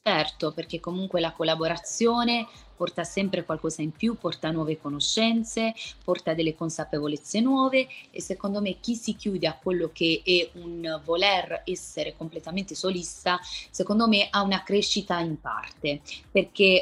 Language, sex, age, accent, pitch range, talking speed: Italian, female, 20-39, native, 160-200 Hz, 145 wpm